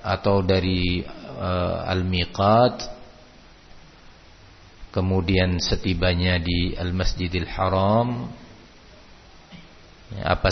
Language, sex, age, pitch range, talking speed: Malay, male, 50-69, 90-105 Hz, 55 wpm